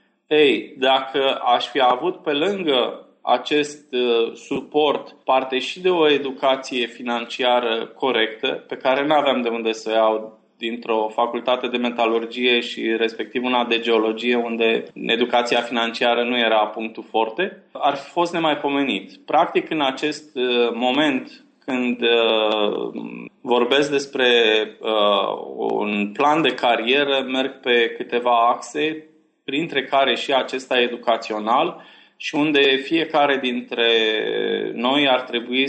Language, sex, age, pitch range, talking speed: Romanian, male, 20-39, 115-140 Hz, 125 wpm